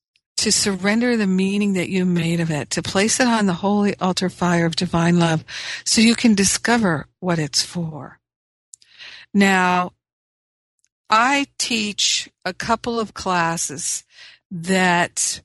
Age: 50-69